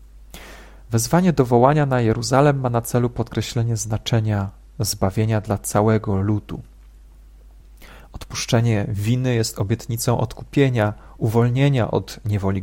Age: 40-59